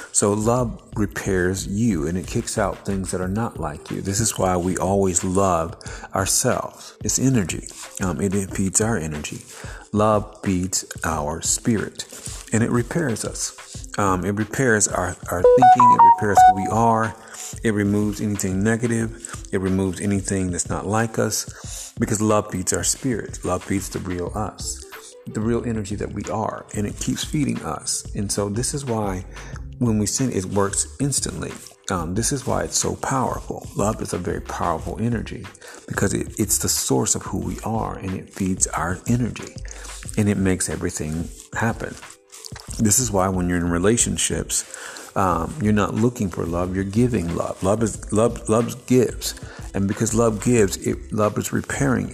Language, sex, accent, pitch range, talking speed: English, male, American, 95-115 Hz, 175 wpm